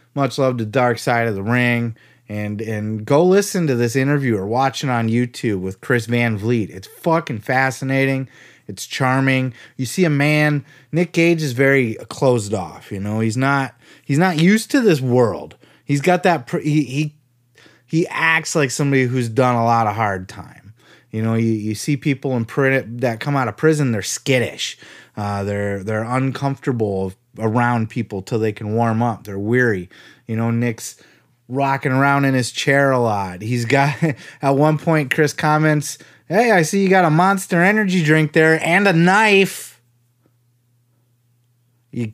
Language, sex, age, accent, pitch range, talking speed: English, male, 30-49, American, 115-160 Hz, 175 wpm